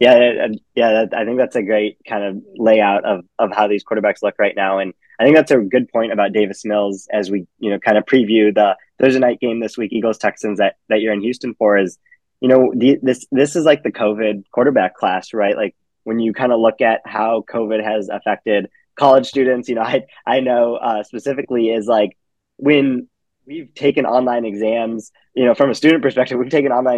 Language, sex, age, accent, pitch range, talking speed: English, male, 20-39, American, 105-130 Hz, 220 wpm